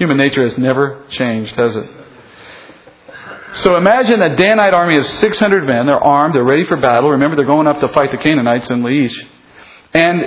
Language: English